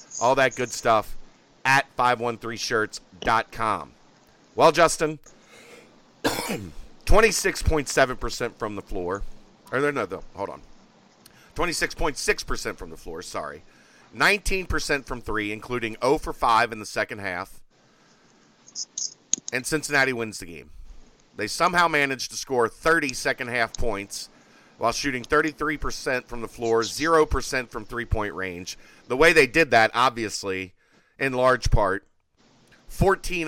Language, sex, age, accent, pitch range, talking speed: English, male, 40-59, American, 110-135 Hz, 125 wpm